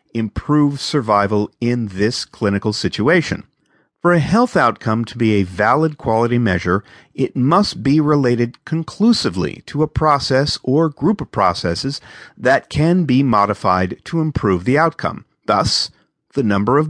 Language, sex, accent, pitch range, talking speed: English, male, American, 100-145 Hz, 140 wpm